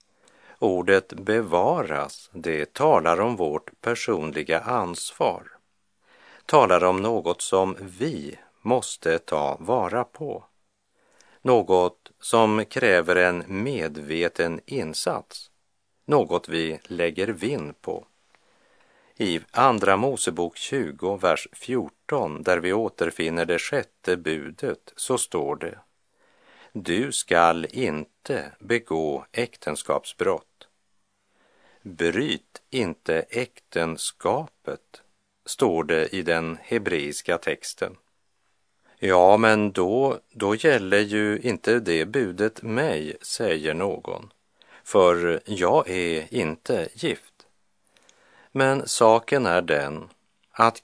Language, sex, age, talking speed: Russian, male, 50-69, 95 wpm